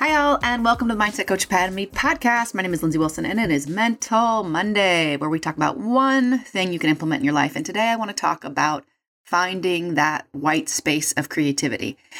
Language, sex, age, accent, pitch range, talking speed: English, female, 30-49, American, 150-215 Hz, 215 wpm